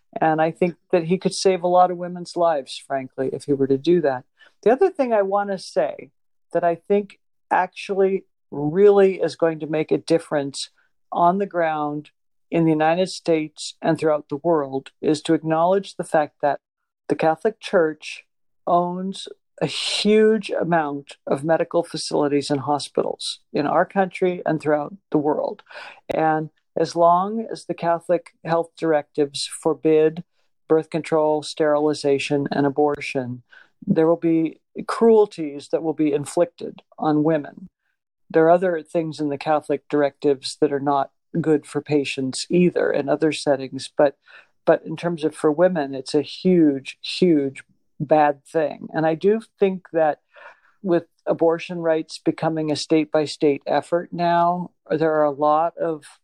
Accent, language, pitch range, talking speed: American, English, 150-180 Hz, 155 wpm